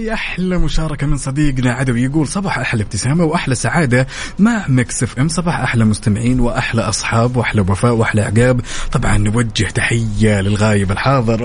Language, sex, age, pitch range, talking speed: Arabic, male, 20-39, 105-135 Hz, 145 wpm